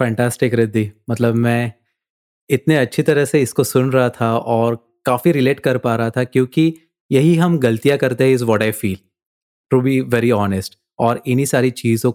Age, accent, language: 30-49, native, Hindi